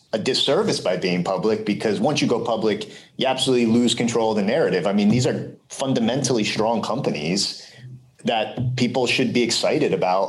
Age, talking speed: 30-49, 175 wpm